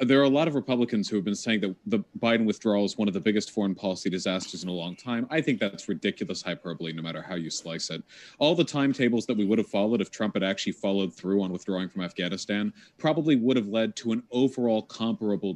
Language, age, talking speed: English, 30-49, 245 wpm